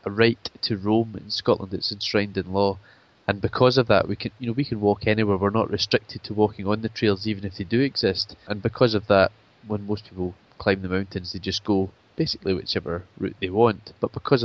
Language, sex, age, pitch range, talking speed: English, male, 20-39, 95-110 Hz, 230 wpm